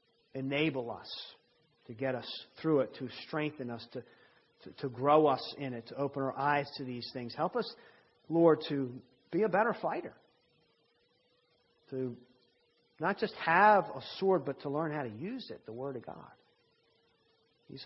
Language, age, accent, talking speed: English, 40-59, American, 170 wpm